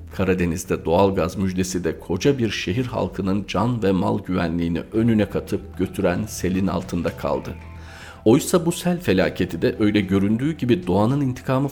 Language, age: Turkish, 40-59